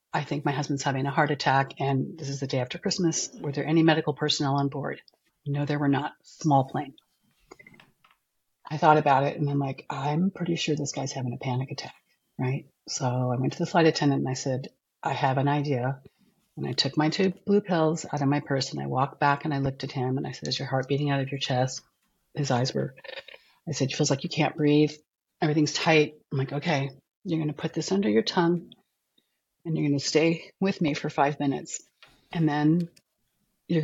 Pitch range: 135-160 Hz